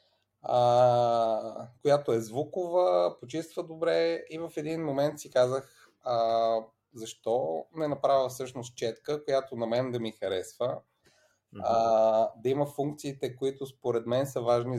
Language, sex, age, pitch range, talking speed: Bulgarian, male, 30-49, 115-145 Hz, 135 wpm